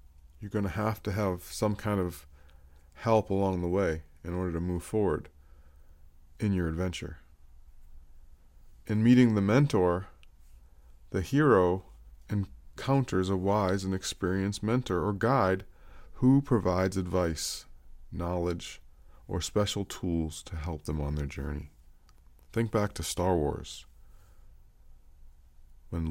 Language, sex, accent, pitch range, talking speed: English, male, American, 75-100 Hz, 120 wpm